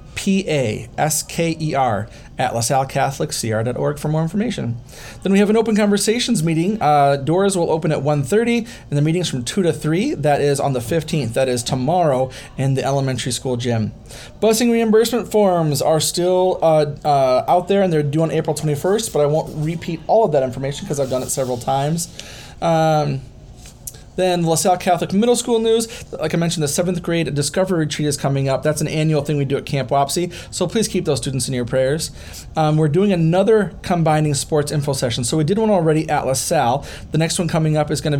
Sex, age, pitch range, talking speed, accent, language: male, 30-49, 130-165 Hz, 200 wpm, American, English